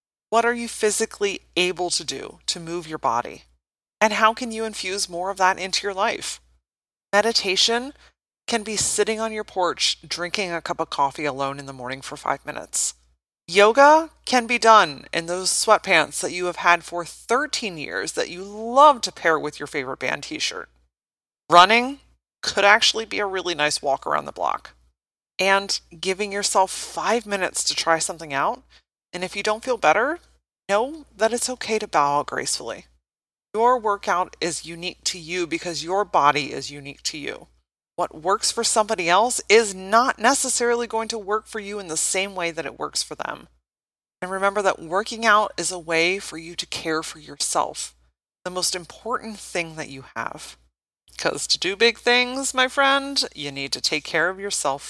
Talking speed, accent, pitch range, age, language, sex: 185 wpm, American, 155-220 Hz, 30-49, English, female